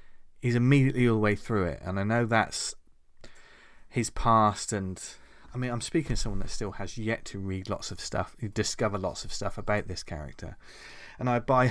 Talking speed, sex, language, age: 200 wpm, male, English, 30-49